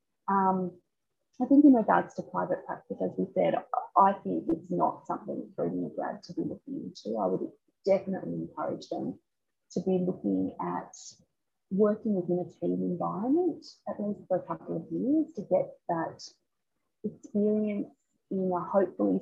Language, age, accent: English, 30-49, Australian